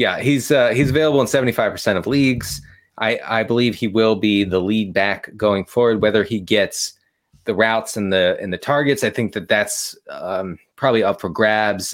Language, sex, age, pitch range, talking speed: English, male, 30-49, 105-140 Hz, 205 wpm